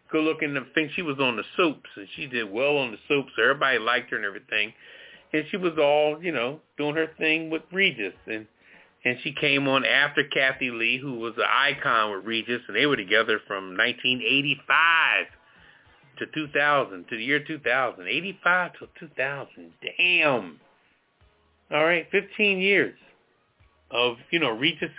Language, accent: English, American